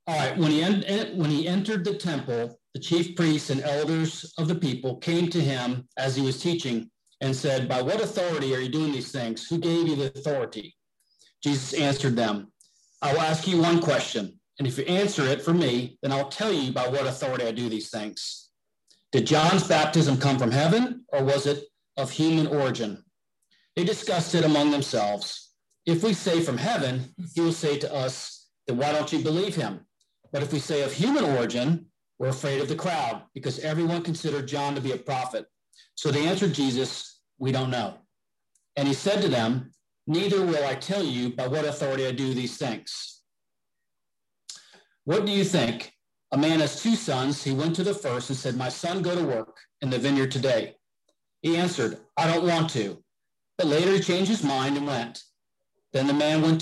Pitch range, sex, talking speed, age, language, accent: 130-170 Hz, male, 195 wpm, 40-59, English, American